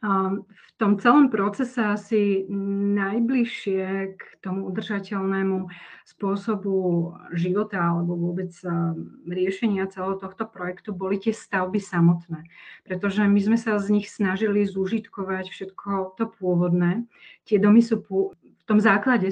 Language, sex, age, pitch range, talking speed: Slovak, female, 30-49, 180-205 Hz, 120 wpm